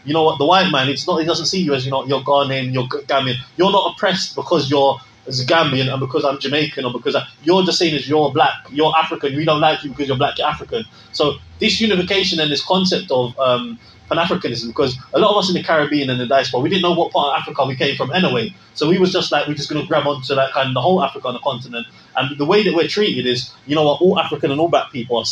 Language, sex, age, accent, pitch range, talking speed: English, male, 20-39, British, 130-170 Hz, 275 wpm